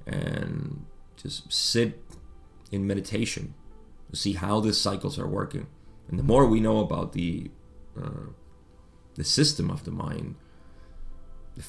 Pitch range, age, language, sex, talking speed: 85-115 Hz, 30-49, English, male, 135 wpm